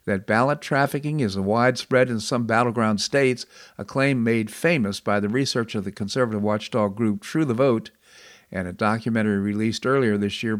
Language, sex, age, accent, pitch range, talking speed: English, male, 50-69, American, 105-130 Hz, 175 wpm